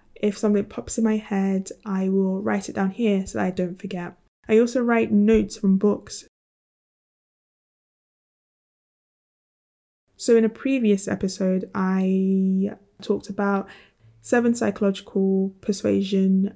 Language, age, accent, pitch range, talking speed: English, 10-29, British, 195-215 Hz, 125 wpm